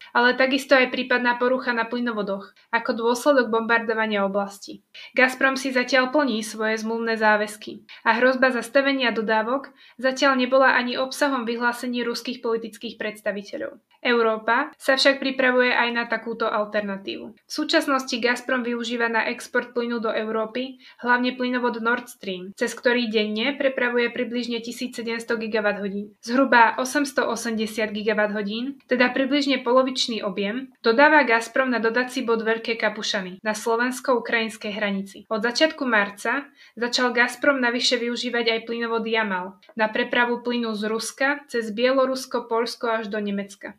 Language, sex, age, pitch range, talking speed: Slovak, female, 20-39, 225-255 Hz, 130 wpm